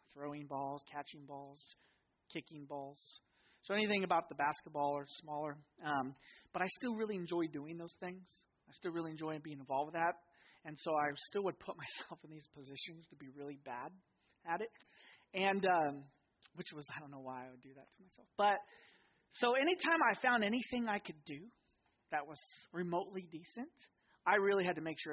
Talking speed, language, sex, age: 190 wpm, English, male, 30-49